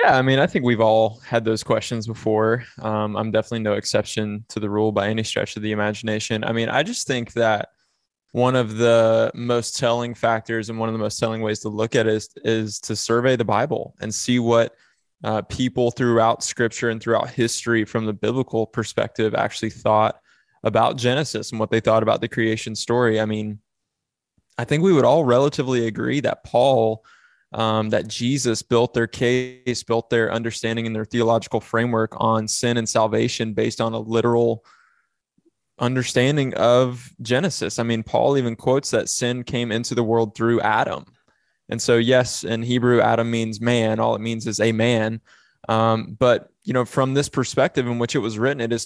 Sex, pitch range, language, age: male, 110-120 Hz, English, 20-39